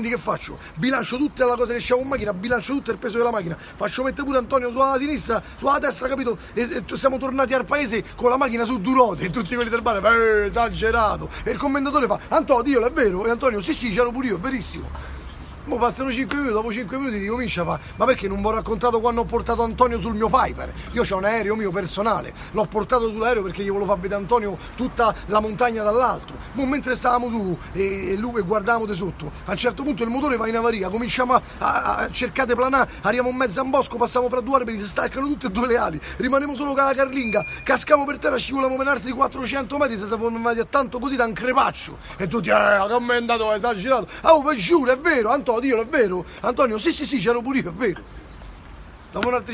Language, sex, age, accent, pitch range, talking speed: Italian, male, 30-49, native, 210-260 Hz, 230 wpm